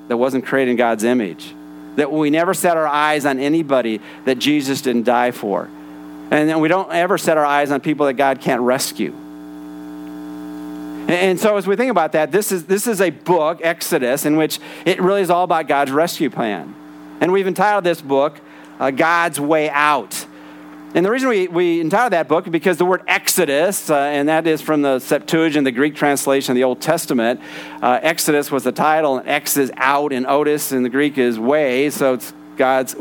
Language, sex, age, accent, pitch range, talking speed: English, male, 50-69, American, 125-165 Hz, 205 wpm